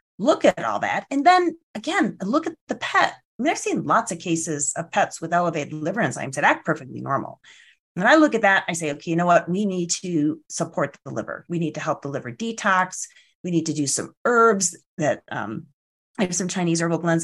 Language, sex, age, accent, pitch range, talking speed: English, female, 30-49, American, 155-225 Hz, 235 wpm